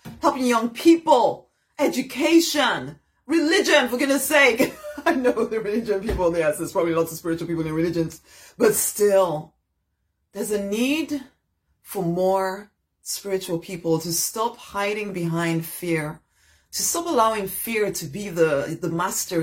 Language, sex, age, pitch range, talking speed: English, female, 30-49, 175-250 Hz, 140 wpm